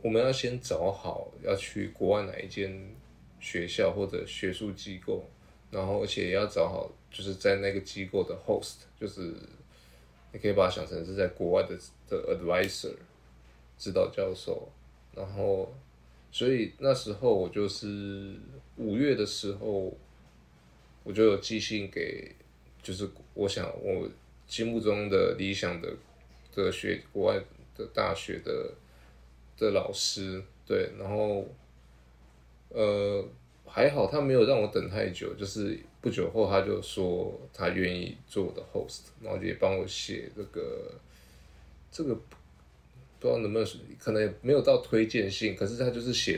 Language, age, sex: Chinese, 20-39, male